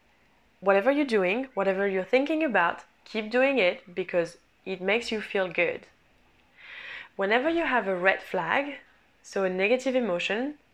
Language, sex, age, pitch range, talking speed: English, female, 20-39, 190-255 Hz, 145 wpm